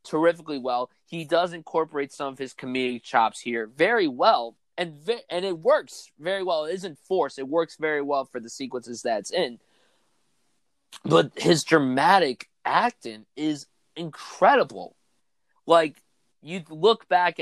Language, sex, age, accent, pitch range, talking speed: English, male, 20-39, American, 125-165 Hz, 145 wpm